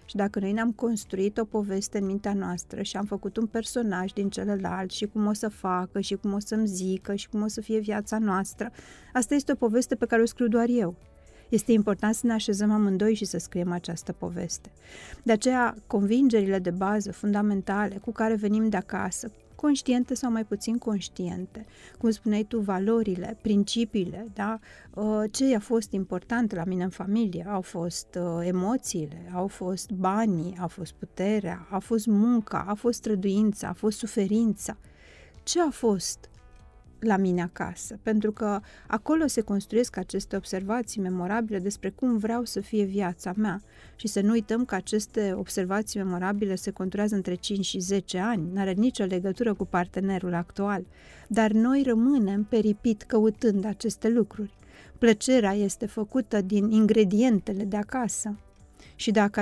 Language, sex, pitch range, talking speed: Romanian, female, 195-225 Hz, 160 wpm